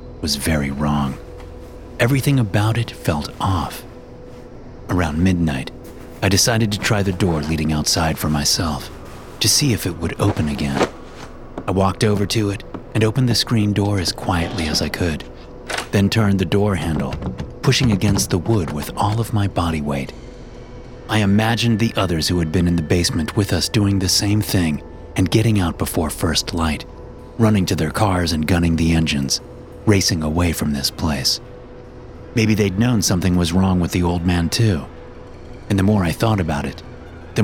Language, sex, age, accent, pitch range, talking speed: English, male, 30-49, American, 80-110 Hz, 180 wpm